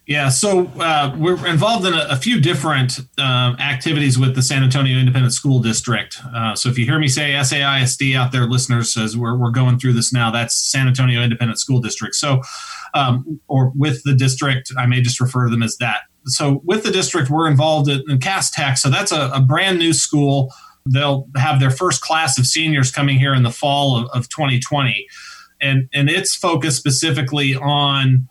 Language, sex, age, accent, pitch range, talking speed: English, male, 30-49, American, 130-150 Hz, 200 wpm